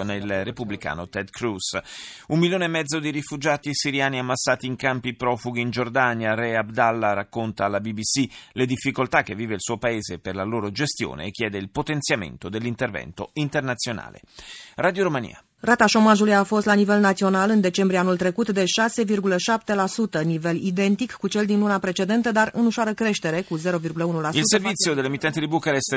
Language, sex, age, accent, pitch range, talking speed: Italian, male, 30-49, native, 110-160 Hz, 135 wpm